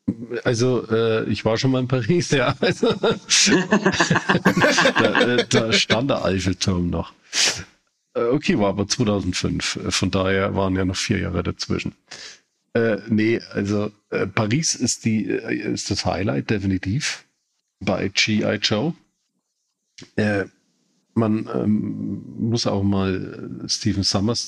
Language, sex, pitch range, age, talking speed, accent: German, male, 100-120 Hz, 40-59, 125 wpm, German